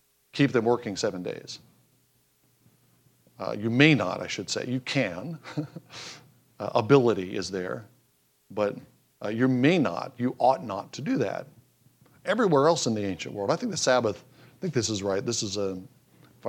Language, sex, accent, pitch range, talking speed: English, male, American, 105-130 Hz, 175 wpm